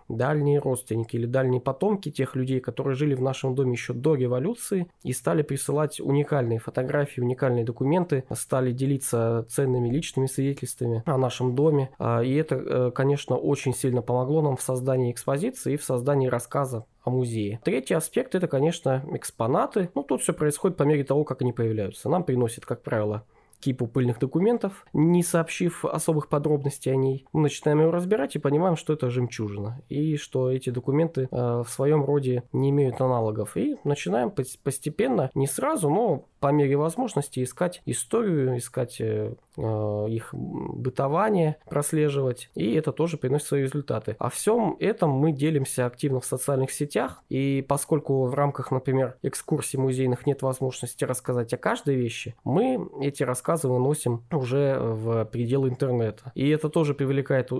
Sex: male